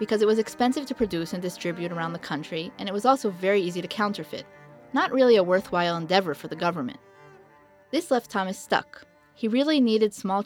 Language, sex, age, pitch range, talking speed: English, female, 20-39, 180-240 Hz, 200 wpm